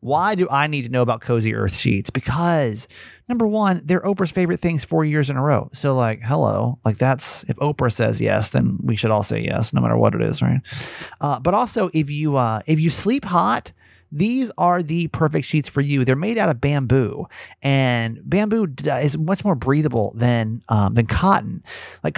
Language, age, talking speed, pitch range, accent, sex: English, 30-49, 210 wpm, 120-175 Hz, American, male